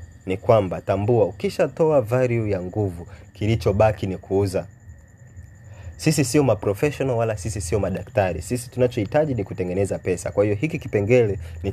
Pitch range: 95-115 Hz